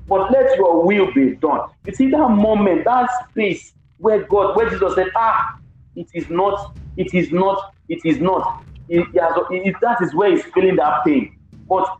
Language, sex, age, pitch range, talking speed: English, male, 50-69, 165-260 Hz, 195 wpm